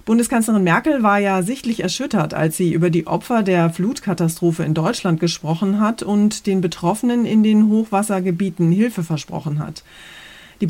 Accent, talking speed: German, 150 wpm